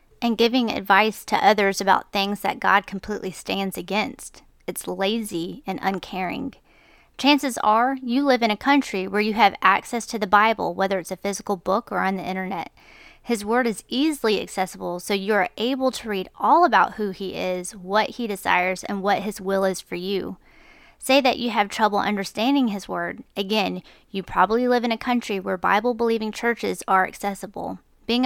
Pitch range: 190-230 Hz